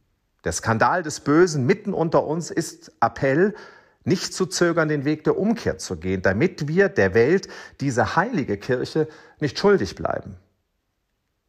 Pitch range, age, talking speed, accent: 105-155 Hz, 40-59, 145 wpm, German